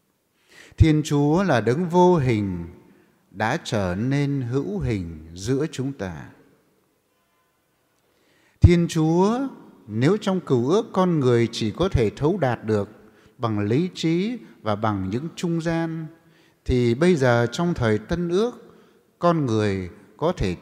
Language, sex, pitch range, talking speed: English, male, 120-180 Hz, 135 wpm